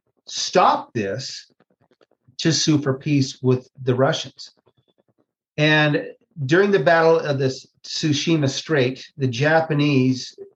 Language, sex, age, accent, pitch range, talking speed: English, male, 40-59, American, 130-155 Hz, 110 wpm